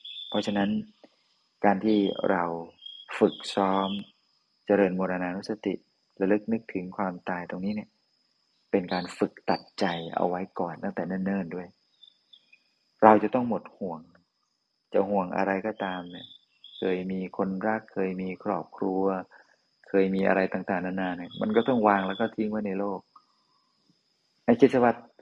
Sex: male